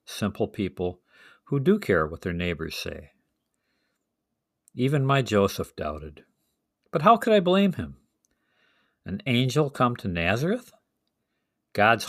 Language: English